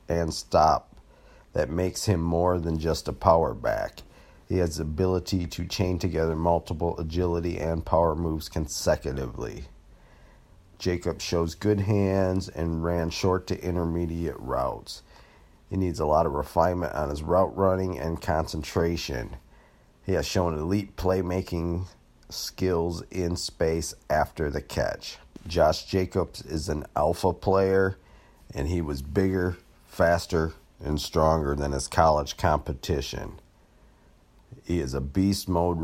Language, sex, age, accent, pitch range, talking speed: English, male, 50-69, American, 80-90 Hz, 130 wpm